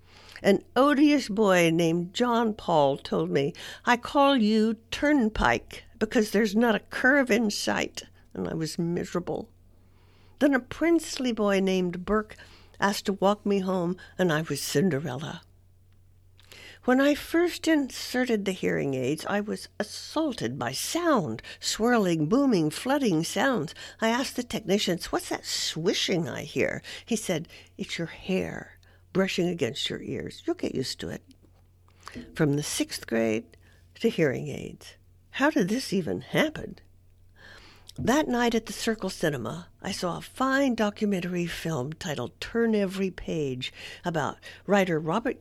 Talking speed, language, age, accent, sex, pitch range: 145 wpm, English, 60-79, American, female, 140-230 Hz